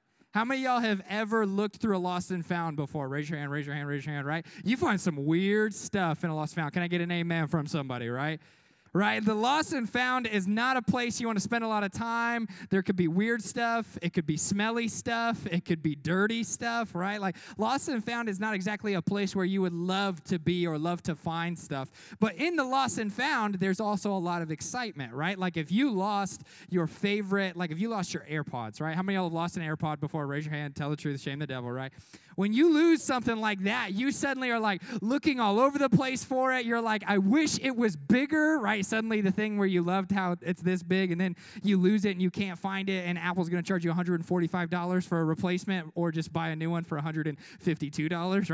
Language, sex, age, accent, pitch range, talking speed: English, male, 20-39, American, 160-215 Hz, 250 wpm